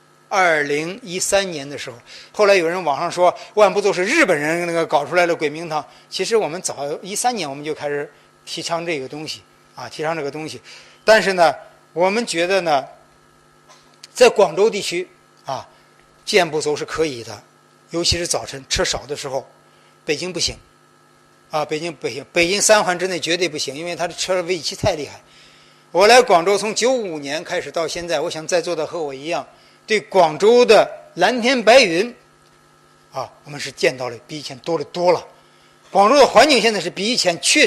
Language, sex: Chinese, male